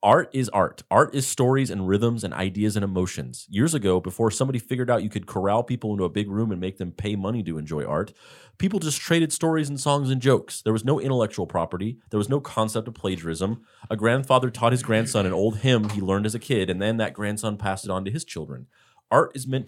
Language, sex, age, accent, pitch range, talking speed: English, male, 30-49, American, 95-125 Hz, 240 wpm